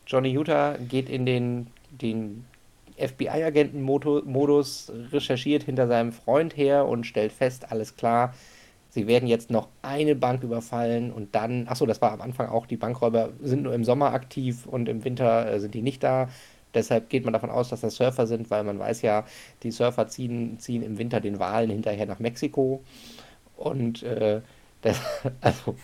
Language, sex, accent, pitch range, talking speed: German, male, German, 115-140 Hz, 170 wpm